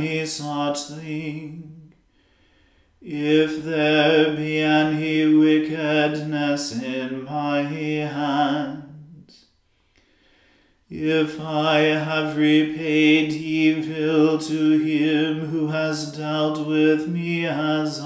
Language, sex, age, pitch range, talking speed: English, male, 40-59, 150-155 Hz, 75 wpm